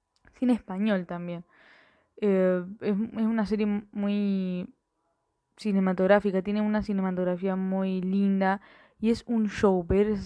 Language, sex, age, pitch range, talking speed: Spanish, female, 10-29, 185-205 Hz, 125 wpm